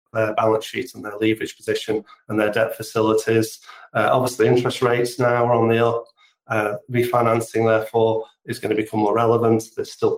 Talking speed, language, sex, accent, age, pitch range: 185 wpm, English, male, British, 40-59, 110-140 Hz